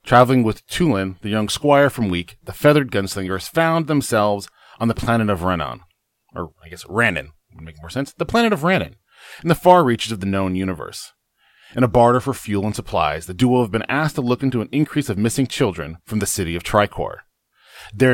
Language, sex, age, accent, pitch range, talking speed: English, male, 40-59, American, 100-135 Hz, 210 wpm